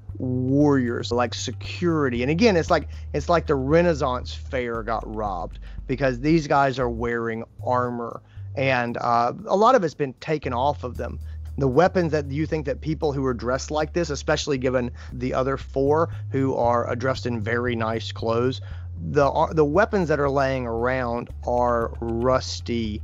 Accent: American